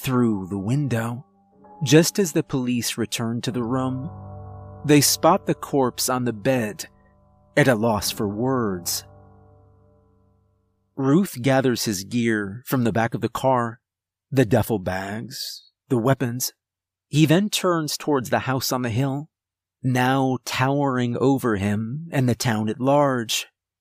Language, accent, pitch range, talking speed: English, American, 100-135 Hz, 140 wpm